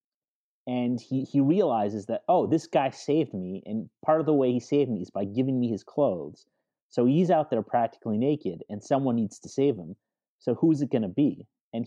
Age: 30-49